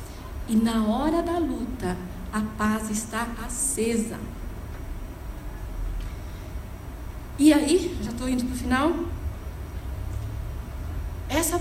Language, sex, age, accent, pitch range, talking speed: Portuguese, female, 40-59, Brazilian, 235-335 Hz, 95 wpm